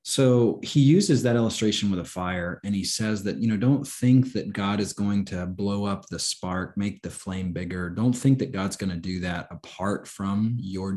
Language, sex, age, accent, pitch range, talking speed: English, male, 30-49, American, 90-115 Hz, 220 wpm